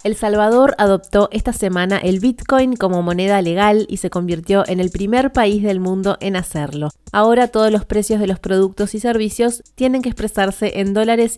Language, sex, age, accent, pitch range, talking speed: Spanish, female, 30-49, Argentinian, 185-220 Hz, 185 wpm